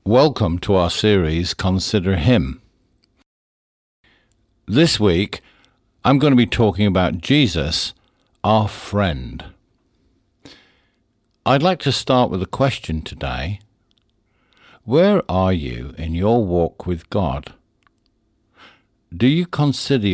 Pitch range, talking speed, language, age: 90-125 Hz, 105 wpm, English, 60-79